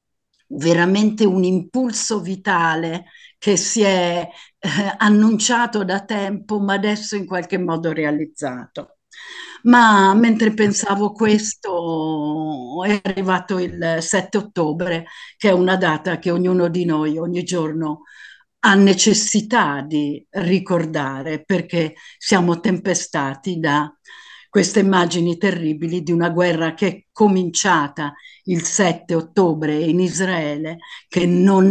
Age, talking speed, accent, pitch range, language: 50-69, 115 wpm, native, 165-205 Hz, Italian